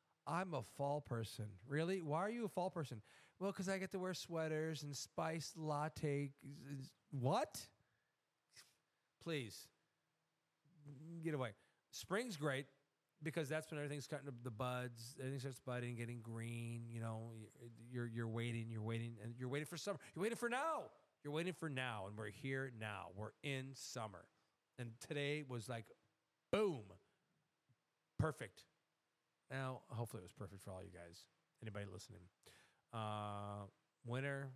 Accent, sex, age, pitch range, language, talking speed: American, male, 40-59, 115-155 Hz, English, 150 wpm